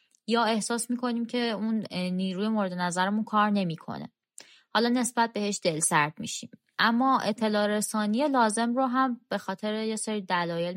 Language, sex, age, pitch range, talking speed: Persian, female, 20-39, 180-235 Hz, 145 wpm